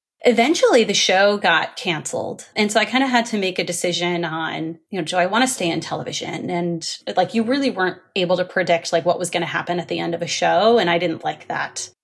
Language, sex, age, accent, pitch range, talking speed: English, female, 30-49, American, 170-215 Hz, 250 wpm